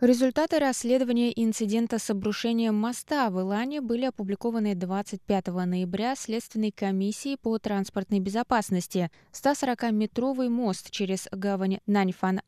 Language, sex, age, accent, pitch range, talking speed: Russian, female, 20-39, native, 190-230 Hz, 105 wpm